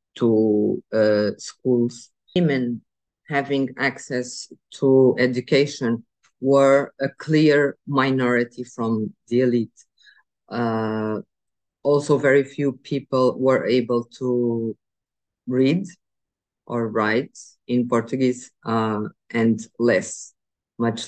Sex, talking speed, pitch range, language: female, 90 wpm, 115-130 Hz, English